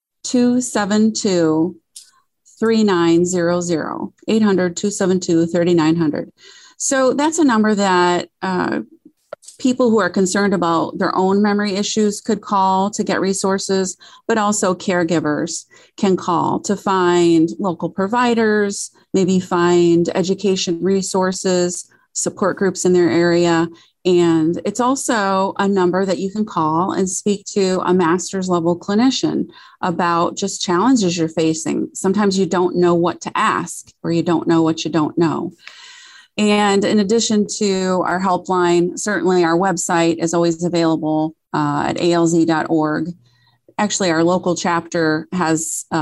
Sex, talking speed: female, 125 wpm